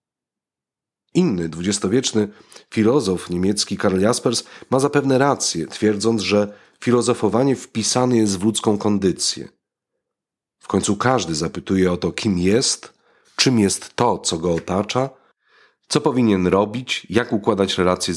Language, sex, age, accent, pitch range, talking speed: Polish, male, 40-59, native, 95-130 Hz, 120 wpm